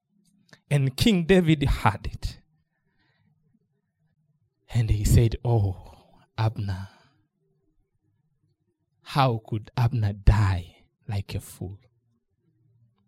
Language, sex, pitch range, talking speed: English, male, 110-150 Hz, 80 wpm